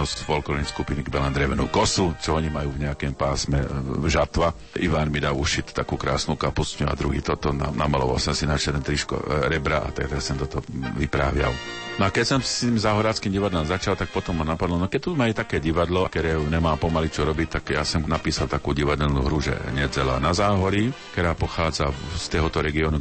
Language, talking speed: Slovak, 195 wpm